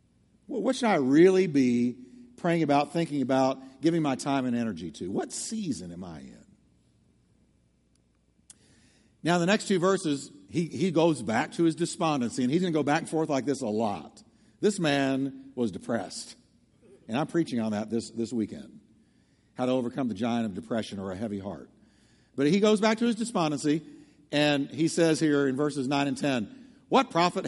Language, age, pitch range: English, 50-69, 145-220 Hz